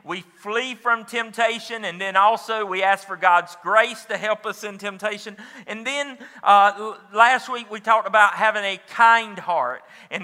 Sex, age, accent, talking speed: male, 40-59, American, 175 wpm